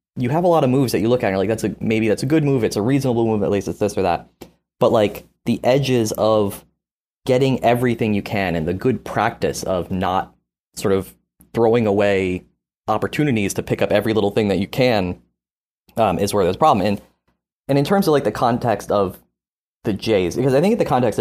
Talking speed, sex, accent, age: 230 wpm, male, American, 20-39